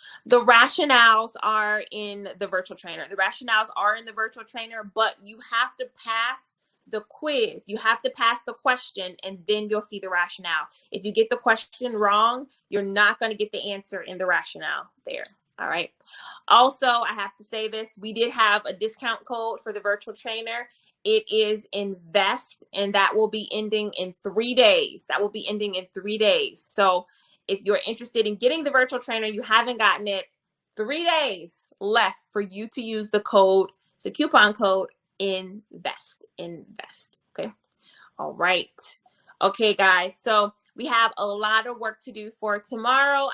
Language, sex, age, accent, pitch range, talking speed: English, female, 20-39, American, 200-240 Hz, 180 wpm